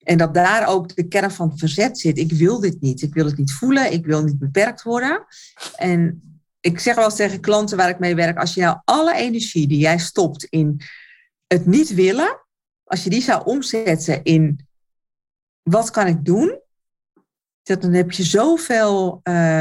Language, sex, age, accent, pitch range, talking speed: Dutch, female, 50-69, Dutch, 160-215 Hz, 185 wpm